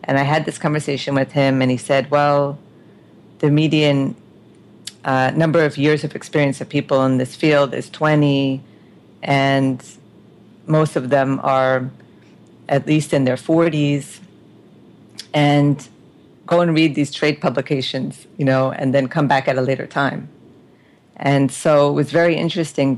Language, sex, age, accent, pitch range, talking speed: English, female, 40-59, American, 135-150 Hz, 155 wpm